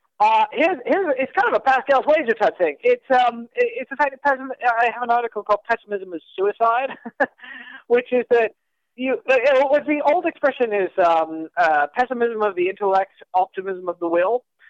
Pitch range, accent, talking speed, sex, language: 185-275 Hz, American, 190 wpm, male, English